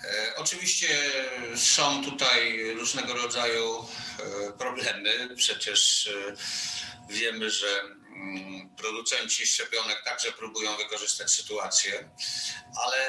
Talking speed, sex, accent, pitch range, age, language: 75 wpm, male, native, 125-175 Hz, 50-69, Polish